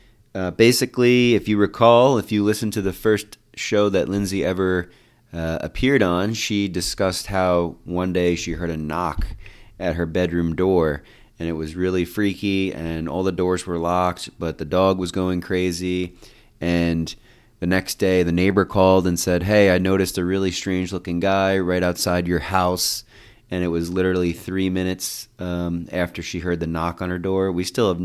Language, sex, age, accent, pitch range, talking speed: English, male, 30-49, American, 90-110 Hz, 185 wpm